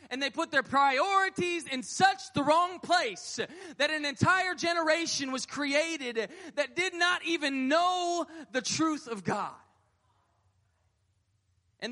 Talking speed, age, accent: 130 wpm, 20-39, American